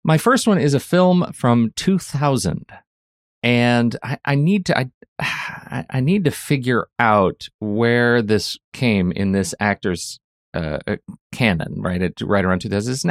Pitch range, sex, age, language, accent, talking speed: 100-140 Hz, male, 30-49, English, American, 155 wpm